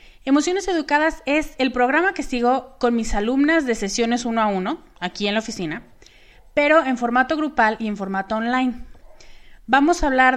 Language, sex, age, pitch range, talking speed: Spanish, female, 30-49, 195-250 Hz, 175 wpm